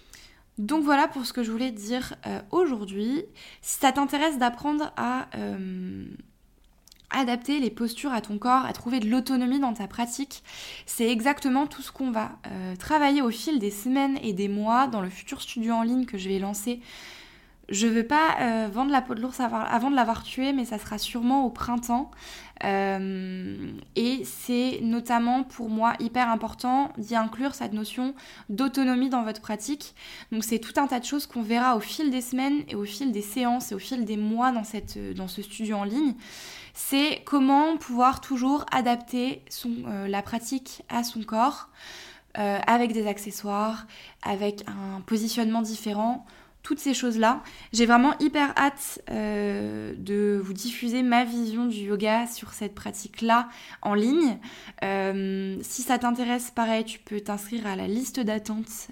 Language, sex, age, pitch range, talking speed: French, female, 20-39, 215-260 Hz, 175 wpm